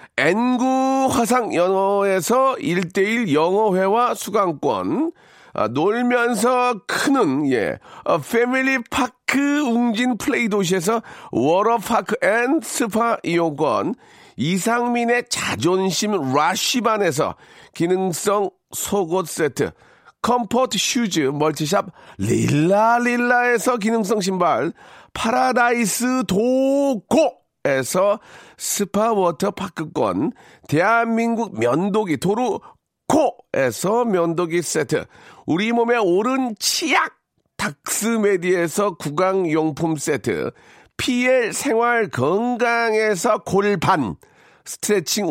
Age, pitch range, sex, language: 40-59, 190-245 Hz, male, Korean